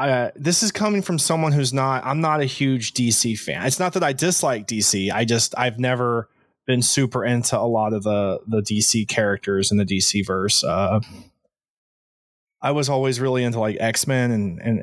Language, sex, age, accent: English, male, 20-39, American